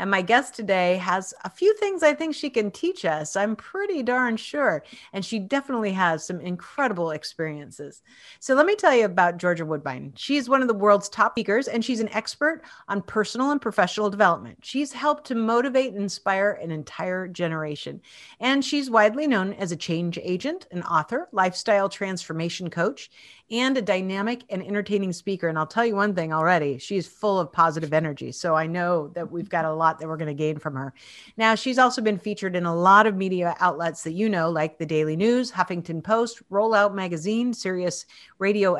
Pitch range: 180-250 Hz